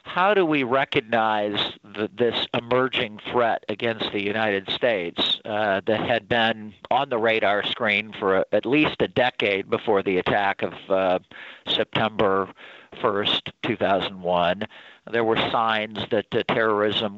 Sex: male